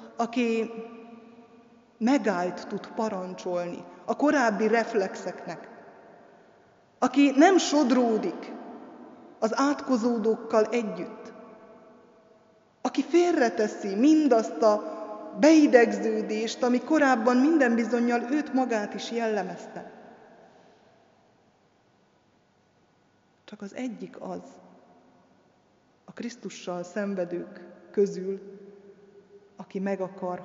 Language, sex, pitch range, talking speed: Hungarian, female, 180-230 Hz, 75 wpm